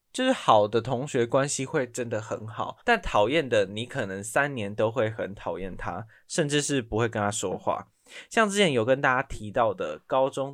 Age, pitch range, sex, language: 10-29, 105-140 Hz, male, Chinese